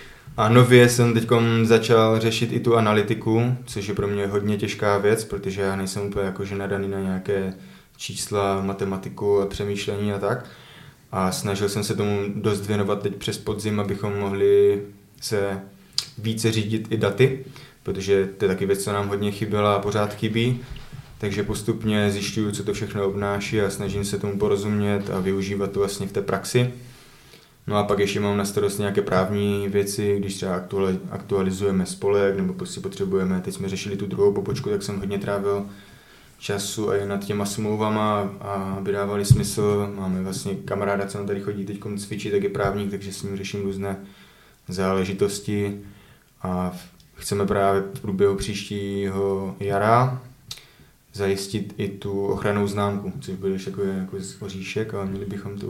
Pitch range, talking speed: 100-110 Hz, 165 wpm